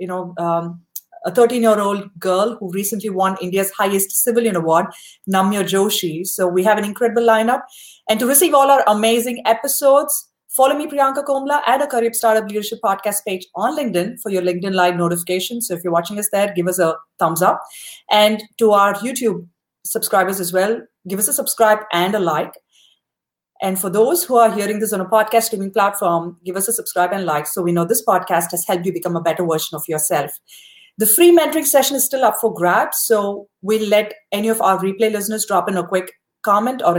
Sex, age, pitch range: female, 30-49, 180-230 Hz